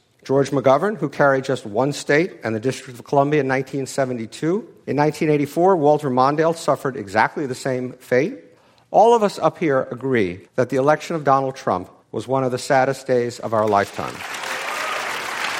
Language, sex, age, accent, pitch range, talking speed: English, male, 50-69, American, 125-160 Hz, 170 wpm